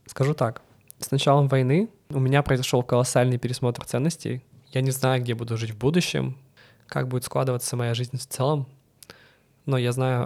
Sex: male